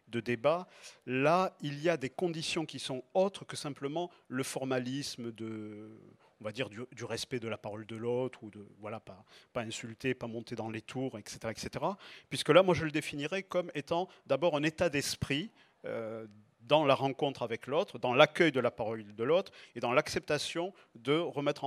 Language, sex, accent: French, male, French